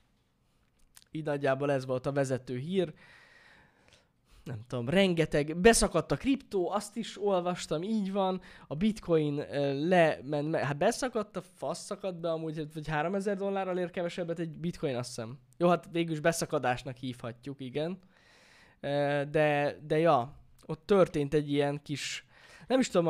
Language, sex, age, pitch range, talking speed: Hungarian, male, 10-29, 140-185 Hz, 150 wpm